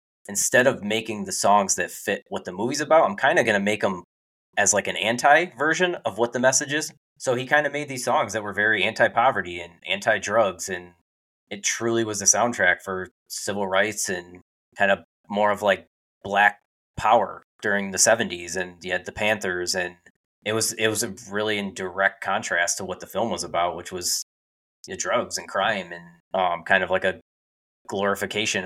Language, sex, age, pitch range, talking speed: English, male, 20-39, 90-115 Hz, 195 wpm